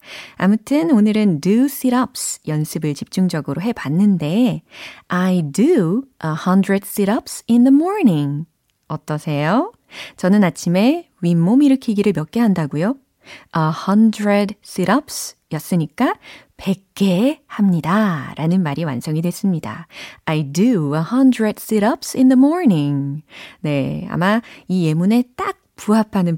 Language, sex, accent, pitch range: Korean, female, native, 160-245 Hz